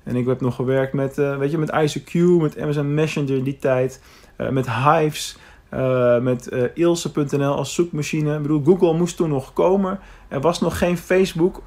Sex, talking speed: male, 195 wpm